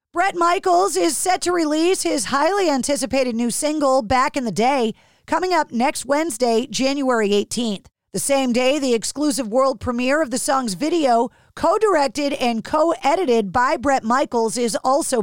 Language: English